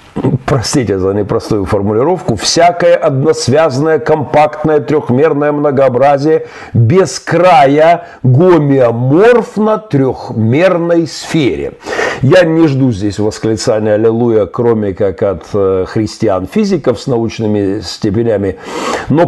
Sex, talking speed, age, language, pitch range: male, 85 wpm, 50-69, Russian, 105-150 Hz